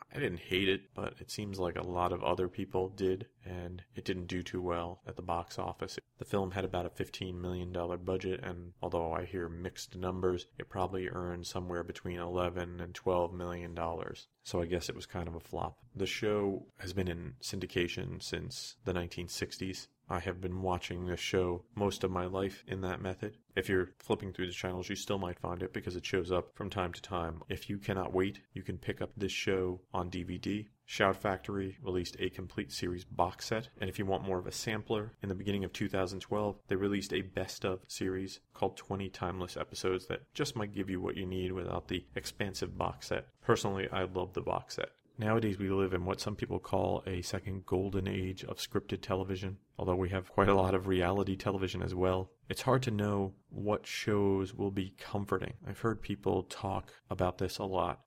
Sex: male